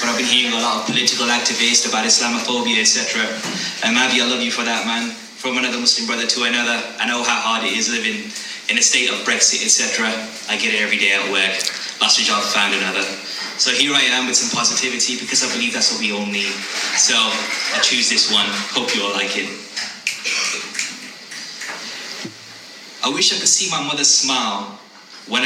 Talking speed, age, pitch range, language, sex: 200 wpm, 20-39, 115-145 Hz, English, male